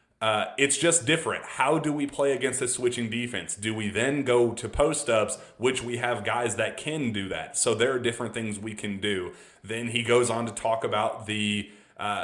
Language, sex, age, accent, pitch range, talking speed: English, male, 30-49, American, 105-125 Hz, 210 wpm